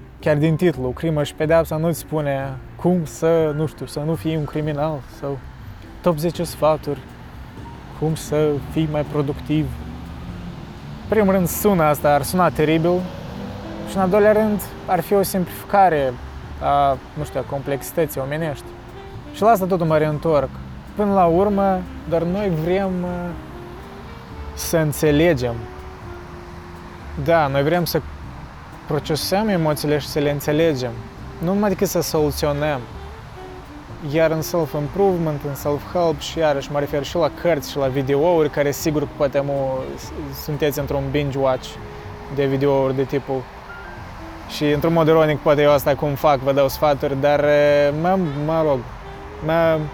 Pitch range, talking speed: 135-165 Hz, 145 wpm